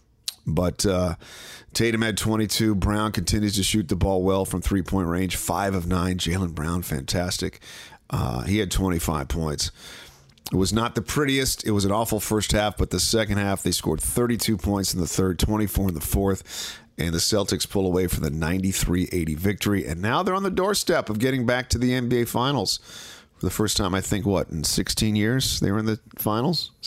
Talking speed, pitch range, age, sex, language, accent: 200 wpm, 90-110 Hz, 40-59, male, English, American